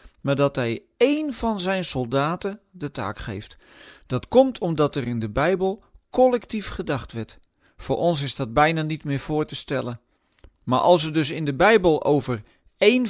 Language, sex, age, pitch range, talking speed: Dutch, male, 50-69, 130-185 Hz, 180 wpm